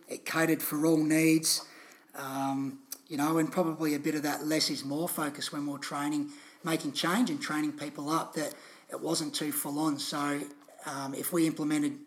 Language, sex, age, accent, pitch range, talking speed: English, male, 30-49, Australian, 135-160 Hz, 190 wpm